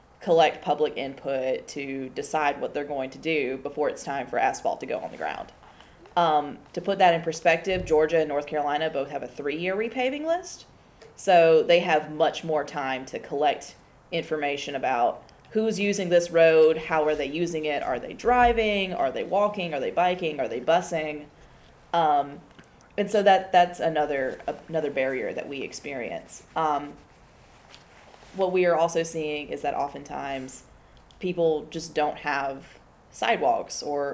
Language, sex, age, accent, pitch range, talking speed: English, female, 20-39, American, 145-175 Hz, 165 wpm